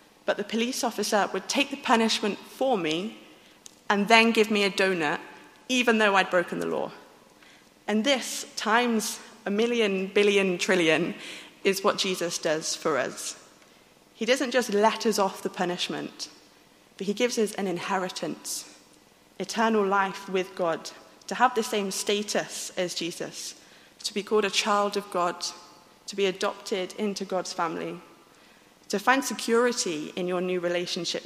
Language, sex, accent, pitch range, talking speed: English, female, British, 180-215 Hz, 155 wpm